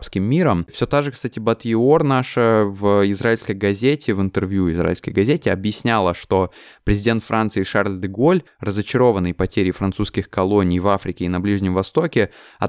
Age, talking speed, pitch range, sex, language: 20-39, 150 wpm, 95-110 Hz, male, Russian